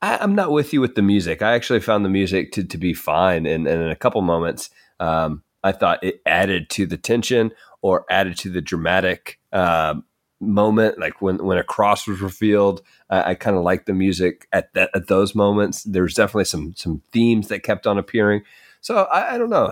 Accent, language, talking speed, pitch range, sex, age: American, English, 215 wpm, 90-115 Hz, male, 30-49